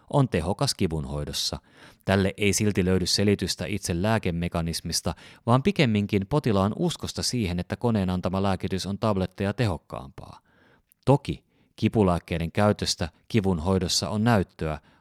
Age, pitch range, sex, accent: 30-49, 90-115 Hz, male, native